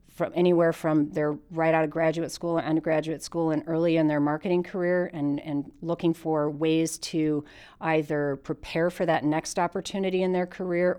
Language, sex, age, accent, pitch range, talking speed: English, female, 40-59, American, 150-170 Hz, 180 wpm